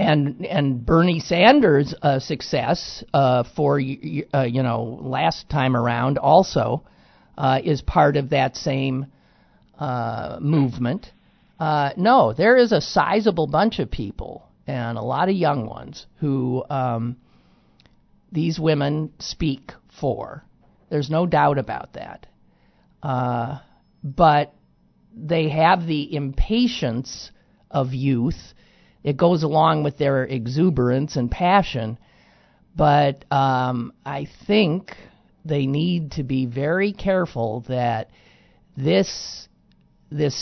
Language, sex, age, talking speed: English, male, 50-69, 115 wpm